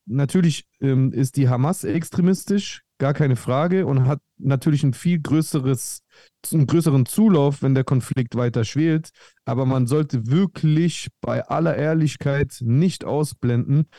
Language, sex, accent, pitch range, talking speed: German, male, German, 125-155 Hz, 135 wpm